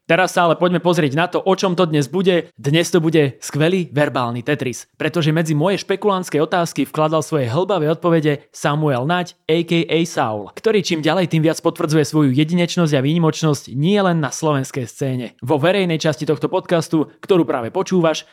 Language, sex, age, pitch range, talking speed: English, male, 20-39, 140-170 Hz, 175 wpm